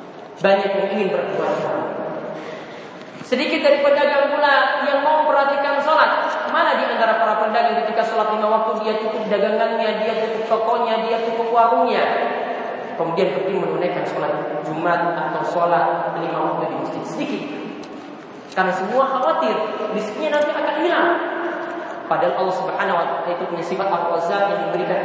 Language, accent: Indonesian, native